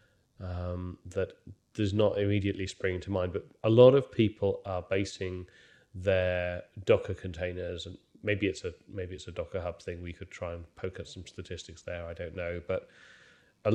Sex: male